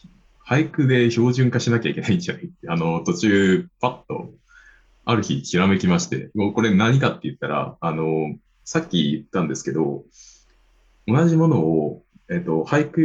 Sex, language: male, Japanese